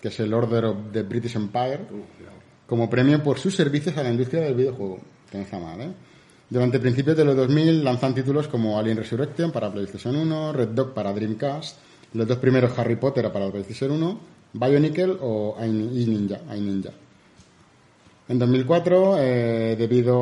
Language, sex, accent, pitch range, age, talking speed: Spanish, male, Spanish, 115-140 Hz, 30-49, 160 wpm